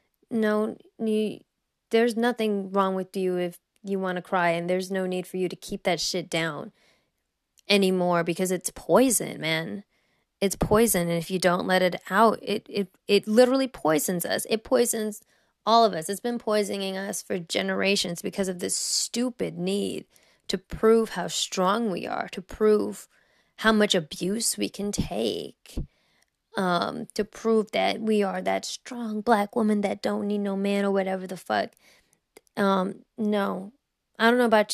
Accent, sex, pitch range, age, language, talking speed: American, female, 185-220 Hz, 20-39, English, 170 wpm